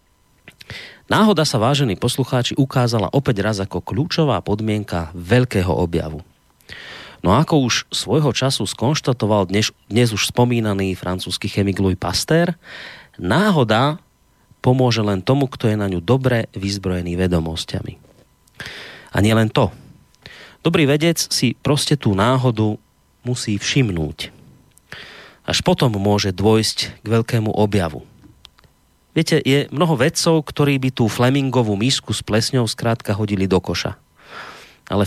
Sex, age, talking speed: male, 30-49, 125 wpm